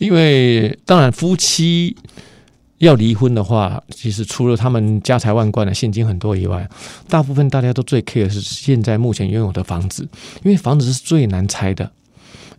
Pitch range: 105-140 Hz